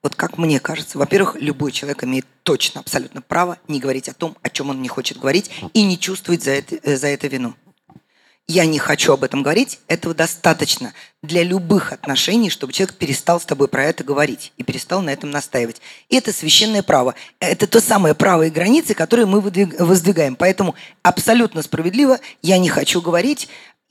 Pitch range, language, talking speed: 150-210 Hz, Russian, 180 wpm